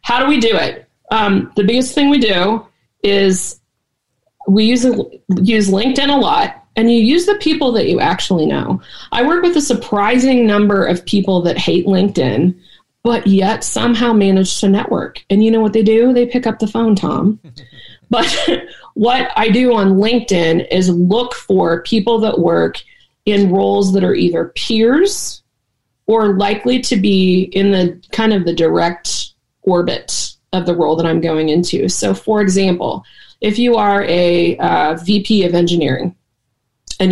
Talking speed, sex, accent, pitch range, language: 170 wpm, female, American, 175-225 Hz, English